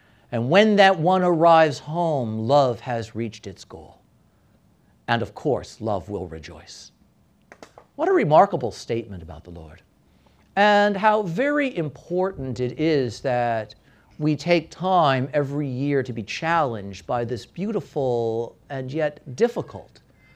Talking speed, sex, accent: 135 wpm, male, American